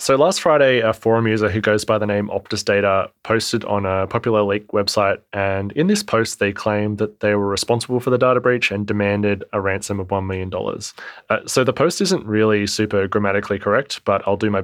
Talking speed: 215 wpm